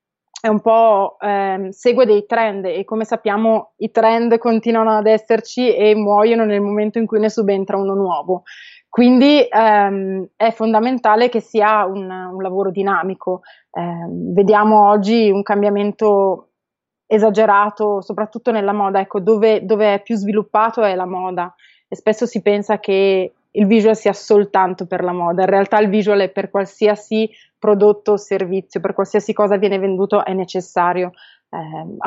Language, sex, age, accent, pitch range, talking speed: Italian, female, 20-39, native, 190-220 Hz, 155 wpm